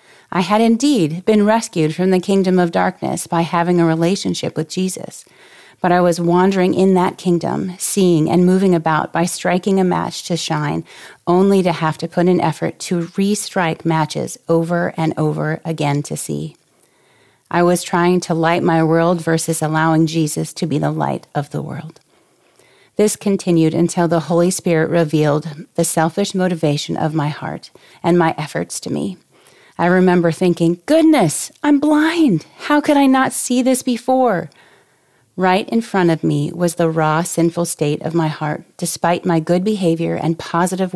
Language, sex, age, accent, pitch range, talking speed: English, female, 30-49, American, 160-185 Hz, 170 wpm